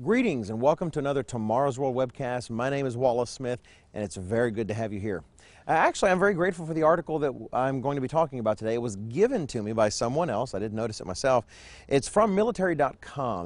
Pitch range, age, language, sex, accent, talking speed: 110-140 Hz, 40-59, English, male, American, 230 wpm